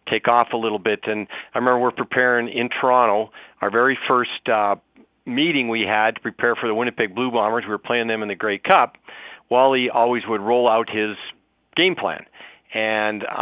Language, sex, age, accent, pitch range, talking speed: English, male, 40-59, American, 110-130 Hz, 190 wpm